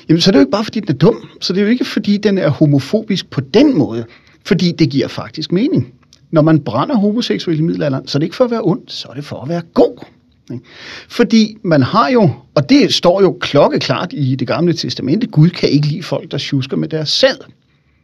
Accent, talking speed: native, 240 wpm